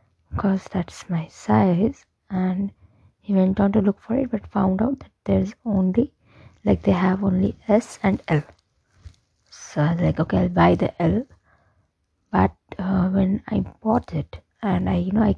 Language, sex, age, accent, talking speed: English, female, 20-39, Indian, 175 wpm